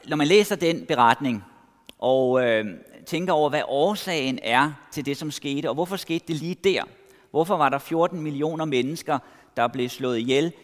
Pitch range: 135-190 Hz